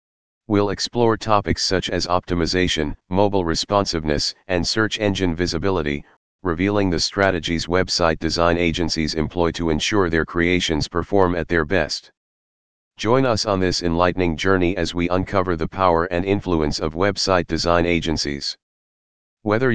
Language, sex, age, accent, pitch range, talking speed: English, male, 40-59, American, 80-95 Hz, 135 wpm